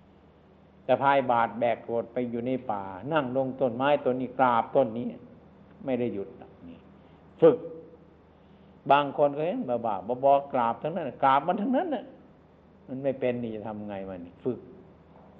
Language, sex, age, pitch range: Thai, male, 60-79, 105-135 Hz